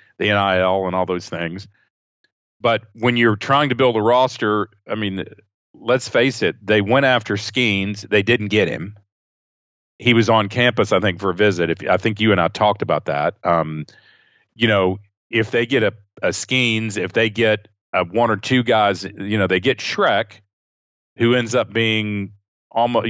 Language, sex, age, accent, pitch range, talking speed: English, male, 40-59, American, 95-115 Hz, 185 wpm